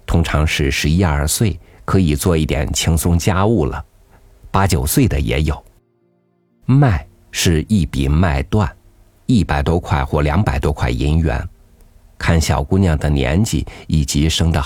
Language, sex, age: Chinese, male, 50-69